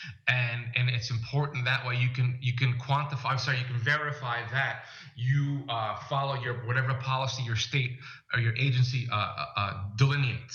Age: 30-49